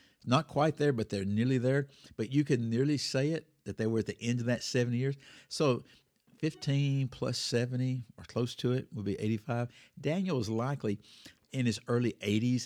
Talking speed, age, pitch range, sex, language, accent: 195 wpm, 50-69, 105-140 Hz, male, English, American